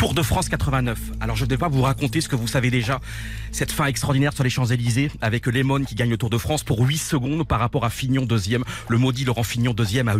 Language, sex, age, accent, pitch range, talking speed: French, male, 40-59, French, 120-145 Hz, 260 wpm